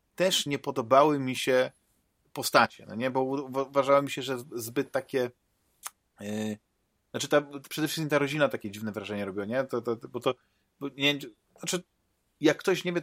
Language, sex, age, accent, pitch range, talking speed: Polish, male, 40-59, native, 115-145 Hz, 175 wpm